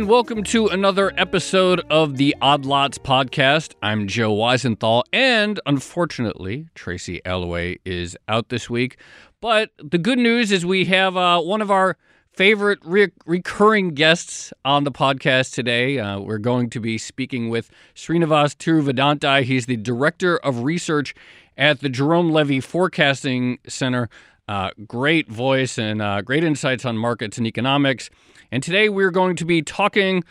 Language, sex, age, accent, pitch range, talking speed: English, male, 40-59, American, 115-165 Hz, 155 wpm